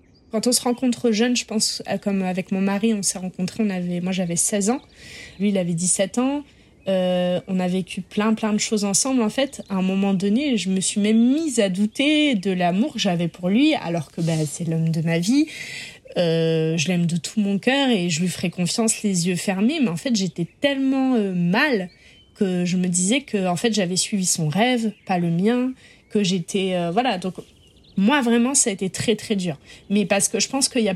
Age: 20-39